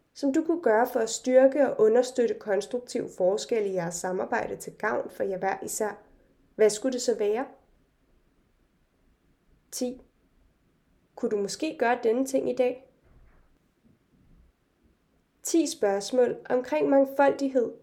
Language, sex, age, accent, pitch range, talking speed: Danish, female, 20-39, native, 215-280 Hz, 130 wpm